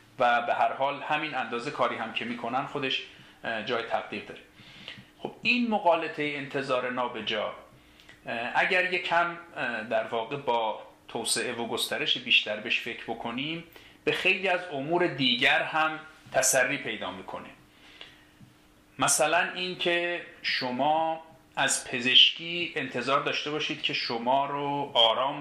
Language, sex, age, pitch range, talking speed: Persian, male, 40-59, 120-165 Hz, 125 wpm